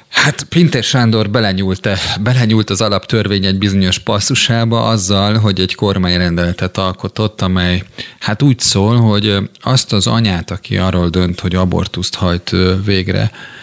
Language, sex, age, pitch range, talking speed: Hungarian, male, 30-49, 95-110 Hz, 130 wpm